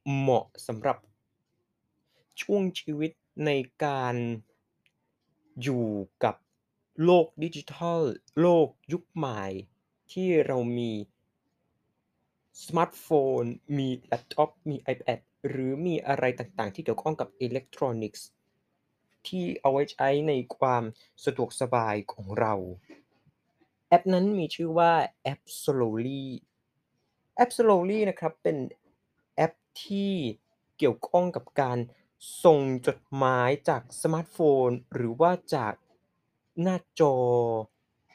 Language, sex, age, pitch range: Thai, male, 20-39, 120-165 Hz